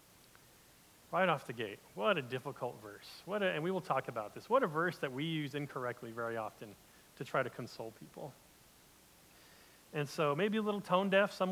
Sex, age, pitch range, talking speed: male, 40-59, 130-170 Hz, 200 wpm